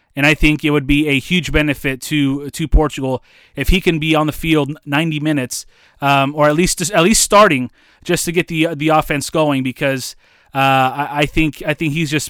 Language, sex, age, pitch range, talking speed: English, male, 30-49, 140-160 Hz, 215 wpm